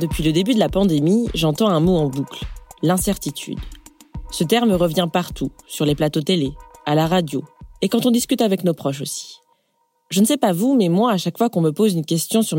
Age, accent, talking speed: 20-39, French, 225 wpm